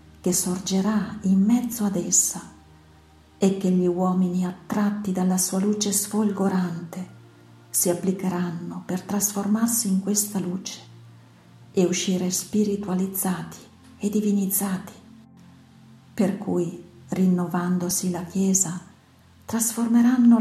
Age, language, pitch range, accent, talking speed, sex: 50-69, Italian, 175-205 Hz, native, 95 wpm, female